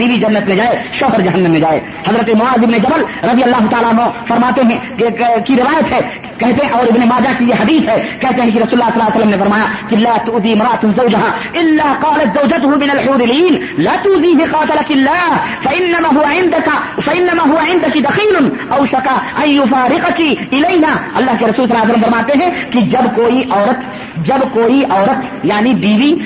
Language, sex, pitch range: Urdu, female, 230-290 Hz